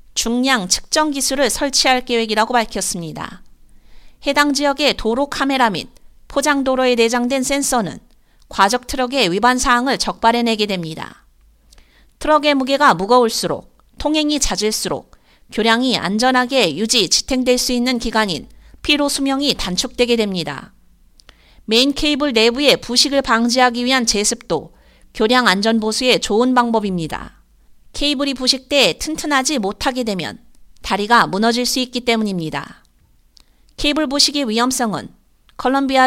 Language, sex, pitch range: Korean, female, 220-270 Hz